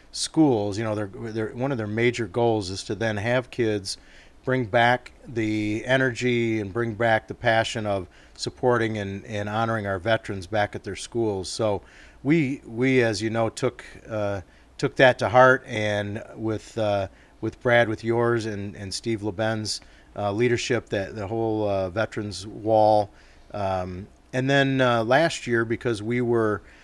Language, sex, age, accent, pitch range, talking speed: English, male, 40-59, American, 100-120 Hz, 170 wpm